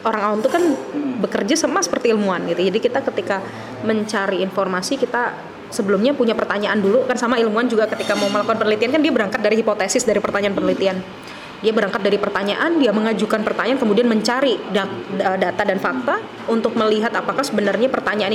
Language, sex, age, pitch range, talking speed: Indonesian, female, 20-39, 200-250 Hz, 165 wpm